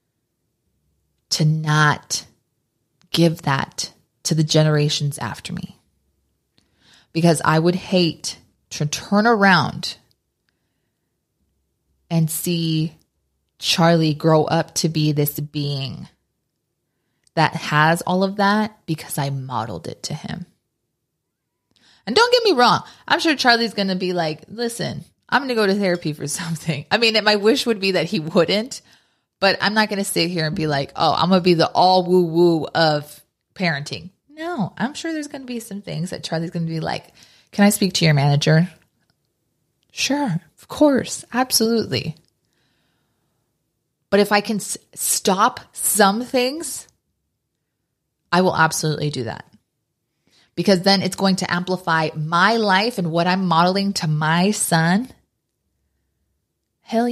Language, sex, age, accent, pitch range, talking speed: English, female, 20-39, American, 150-200 Hz, 145 wpm